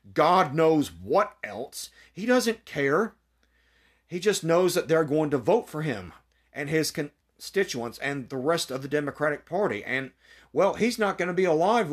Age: 40-59